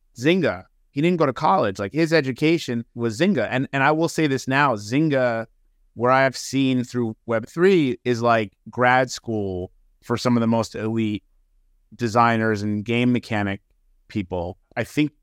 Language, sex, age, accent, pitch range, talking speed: English, male, 30-49, American, 110-135 Hz, 160 wpm